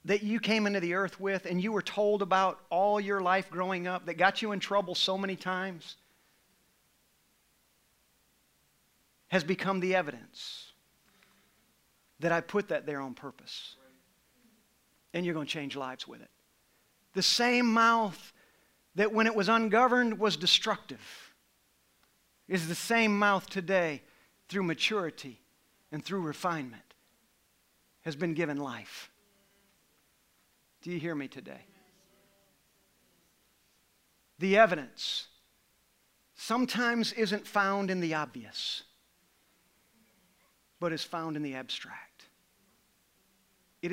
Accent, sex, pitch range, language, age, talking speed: American, male, 165-215 Hz, English, 50-69, 120 wpm